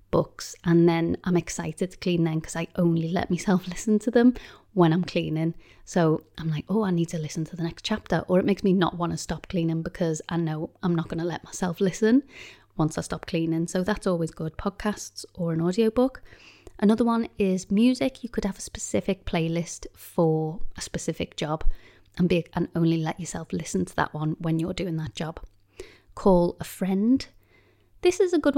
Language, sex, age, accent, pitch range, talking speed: English, female, 30-49, British, 165-215 Hz, 205 wpm